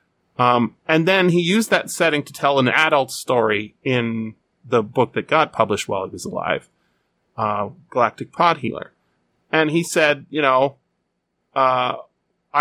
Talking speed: 150 wpm